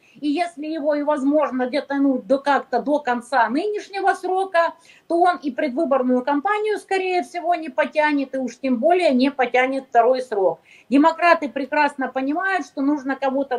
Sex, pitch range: female, 240-320 Hz